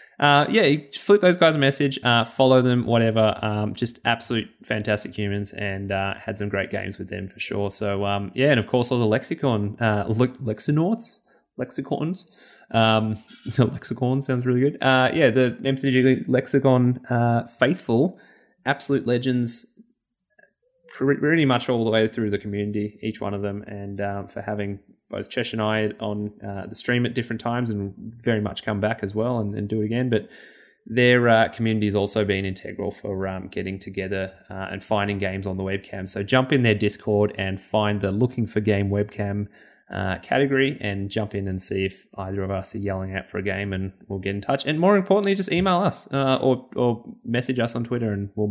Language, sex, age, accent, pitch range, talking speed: English, male, 20-39, Australian, 100-125 Hz, 200 wpm